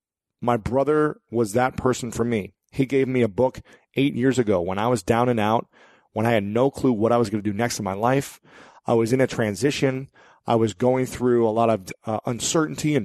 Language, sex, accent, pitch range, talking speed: English, male, American, 110-130 Hz, 235 wpm